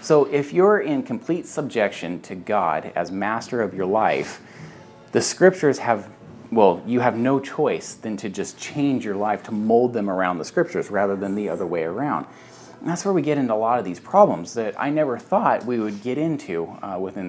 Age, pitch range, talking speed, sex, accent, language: 30-49, 105-145 Hz, 210 wpm, male, American, English